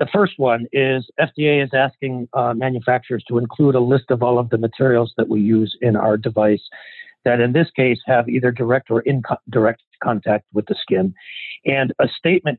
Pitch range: 115-145 Hz